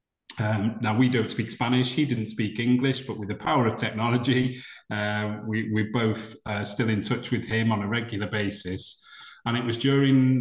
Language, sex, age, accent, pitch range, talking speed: English, male, 30-49, British, 105-125 Hz, 195 wpm